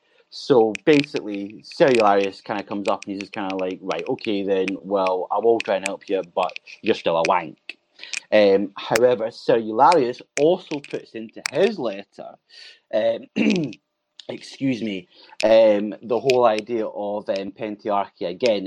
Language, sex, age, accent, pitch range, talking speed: English, male, 30-49, British, 100-130 Hz, 150 wpm